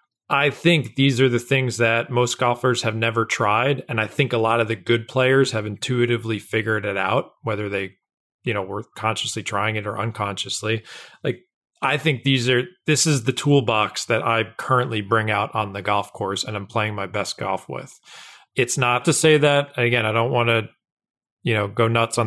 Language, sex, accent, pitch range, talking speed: English, male, American, 110-135 Hz, 205 wpm